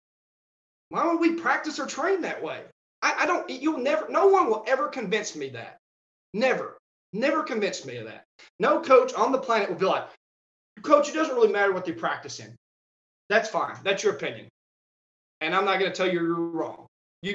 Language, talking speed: English, 200 wpm